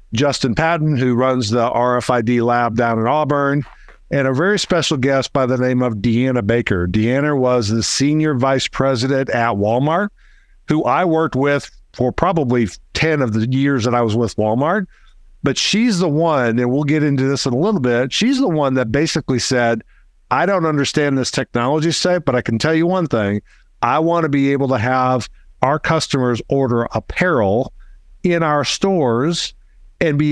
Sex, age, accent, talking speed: male, 50-69, American, 180 wpm